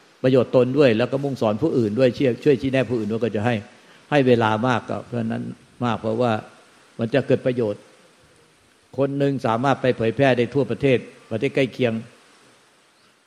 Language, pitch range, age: Thai, 110-130 Hz, 60-79